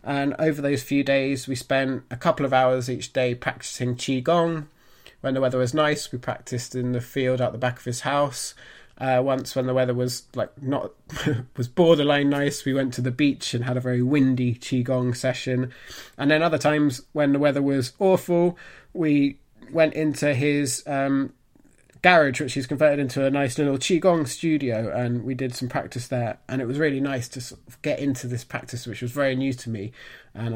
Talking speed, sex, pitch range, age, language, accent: 195 wpm, male, 125-150 Hz, 20-39, English, British